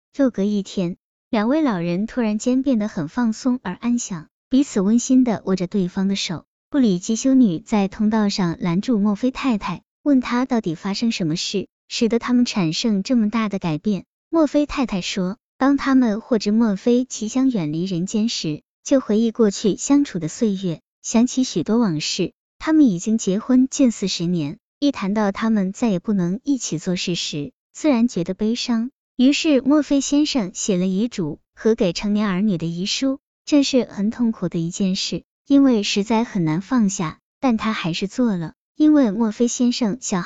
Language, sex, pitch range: Chinese, male, 190-250 Hz